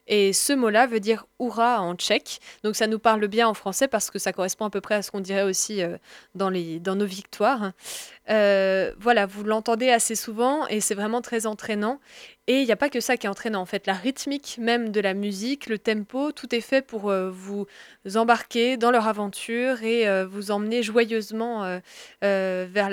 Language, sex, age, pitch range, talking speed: French, female, 20-39, 200-240 Hz, 210 wpm